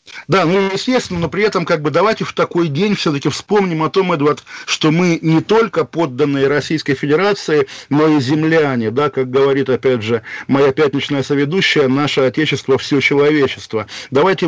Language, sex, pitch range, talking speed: Russian, male, 140-170 Hz, 160 wpm